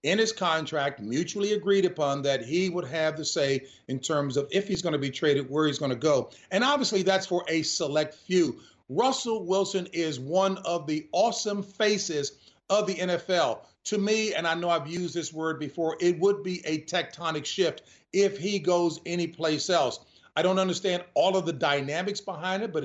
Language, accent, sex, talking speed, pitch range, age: English, American, male, 195 wpm, 155-190 Hz, 40-59